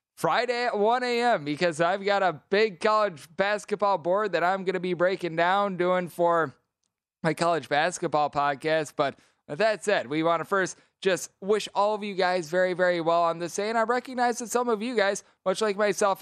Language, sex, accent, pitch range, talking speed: English, male, American, 160-195 Hz, 205 wpm